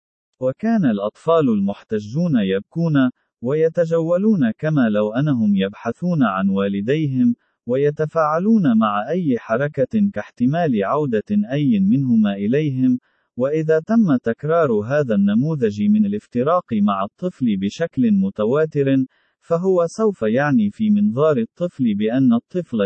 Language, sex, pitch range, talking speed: Arabic, male, 130-210 Hz, 100 wpm